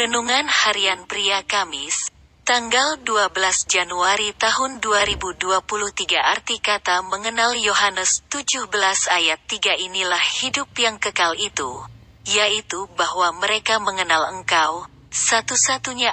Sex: female